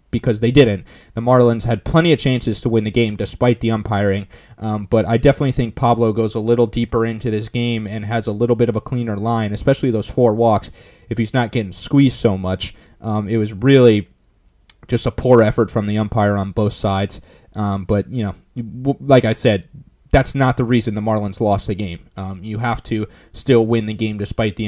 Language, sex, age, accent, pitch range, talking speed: English, male, 20-39, American, 105-120 Hz, 215 wpm